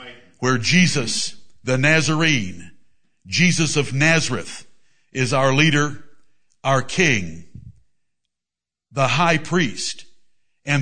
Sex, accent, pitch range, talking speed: male, American, 135-170 Hz, 90 wpm